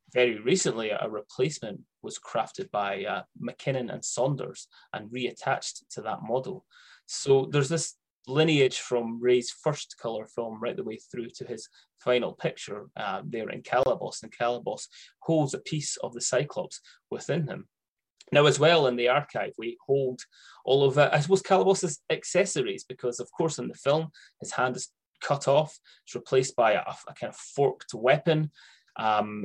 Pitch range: 120-155 Hz